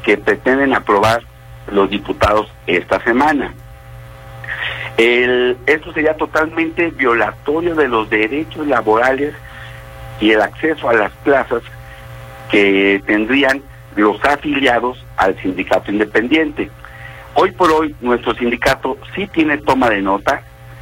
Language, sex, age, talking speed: Spanish, male, 50-69, 110 wpm